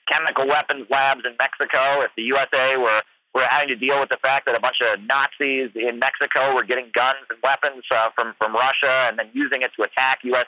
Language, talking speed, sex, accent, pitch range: English, 225 wpm, male, American, 125-155 Hz